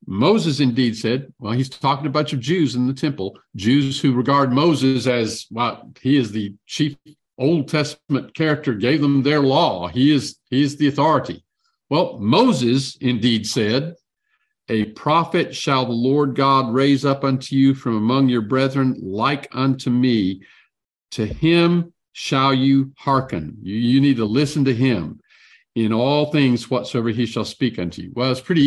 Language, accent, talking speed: English, American, 170 wpm